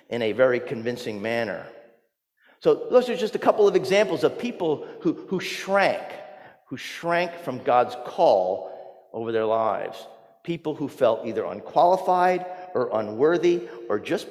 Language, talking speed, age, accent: English, 145 wpm, 50-69, American